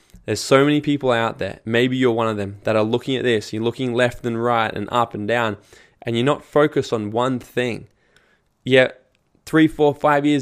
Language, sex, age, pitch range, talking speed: English, male, 20-39, 110-130 Hz, 215 wpm